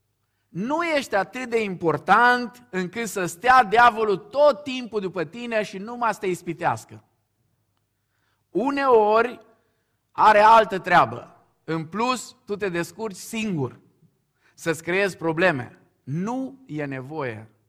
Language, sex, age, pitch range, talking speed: Romanian, male, 50-69, 130-205 Hz, 115 wpm